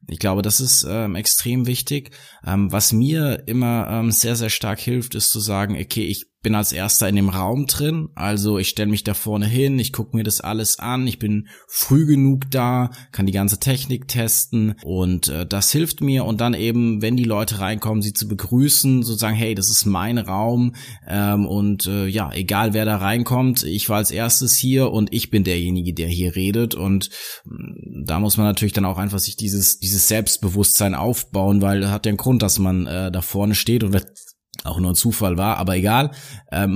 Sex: male